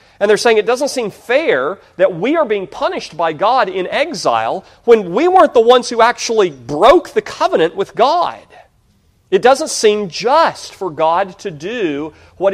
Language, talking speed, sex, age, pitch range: English, 175 wpm, male, 40-59, 125-175 Hz